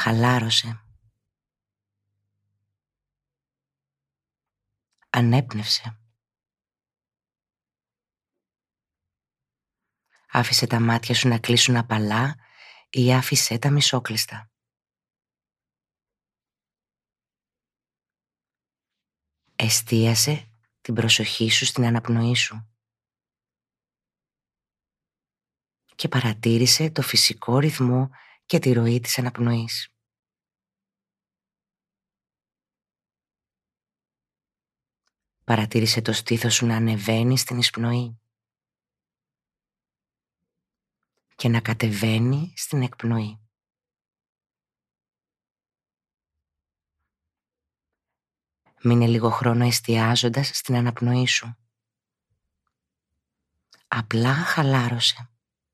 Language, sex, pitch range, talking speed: Greek, female, 110-125 Hz, 55 wpm